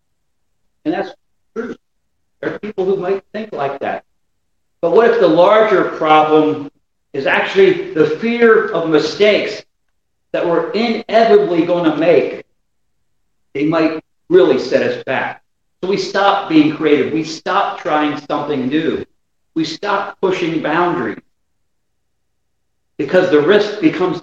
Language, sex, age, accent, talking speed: English, male, 50-69, American, 130 wpm